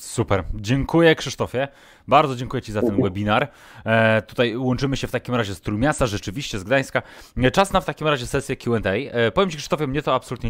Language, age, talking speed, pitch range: Polish, 20-39, 200 wpm, 100-130 Hz